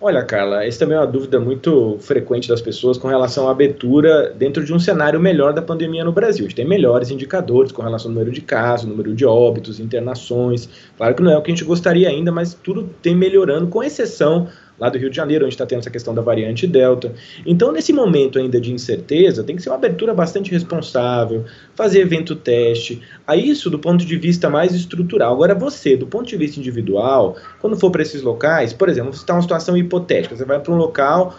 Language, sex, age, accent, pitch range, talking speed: Portuguese, male, 20-39, Brazilian, 130-175 Hz, 220 wpm